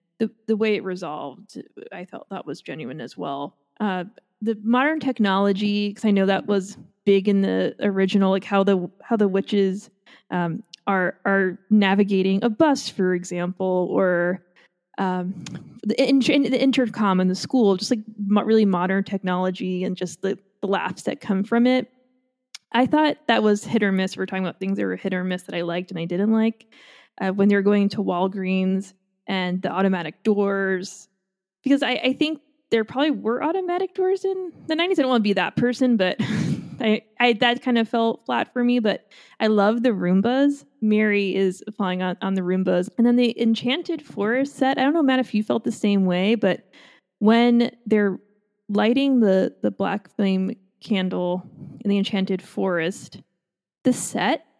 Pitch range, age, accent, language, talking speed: 190-235 Hz, 20-39, American, English, 185 wpm